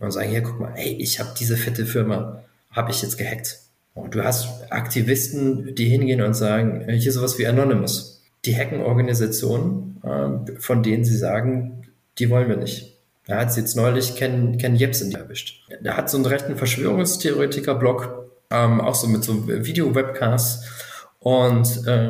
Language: German